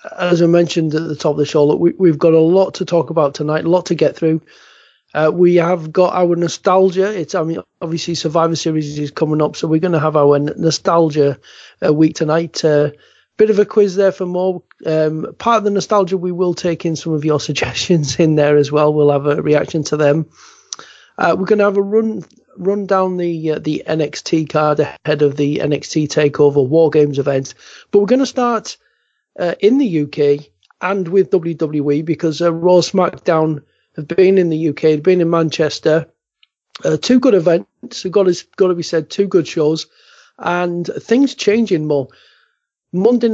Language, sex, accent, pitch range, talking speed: English, male, British, 155-190 Hz, 200 wpm